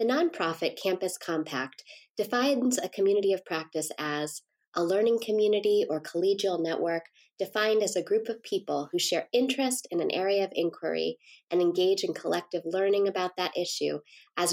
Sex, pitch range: female, 165-205 Hz